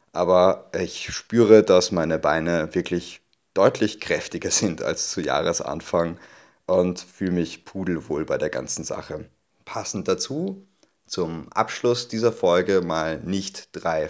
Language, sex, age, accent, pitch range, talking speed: German, male, 30-49, German, 85-110 Hz, 130 wpm